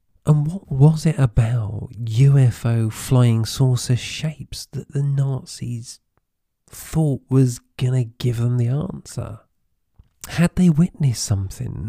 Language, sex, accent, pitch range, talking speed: English, male, British, 110-140 Hz, 120 wpm